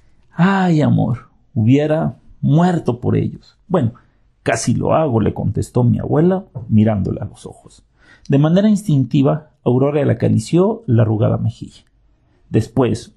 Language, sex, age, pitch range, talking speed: Spanish, male, 50-69, 115-155 Hz, 130 wpm